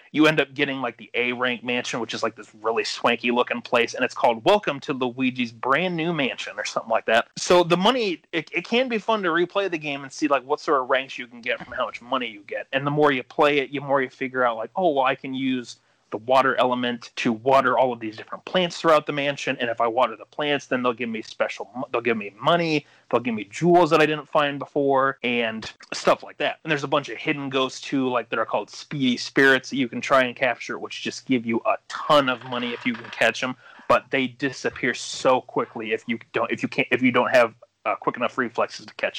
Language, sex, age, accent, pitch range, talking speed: English, male, 30-49, American, 125-150 Hz, 255 wpm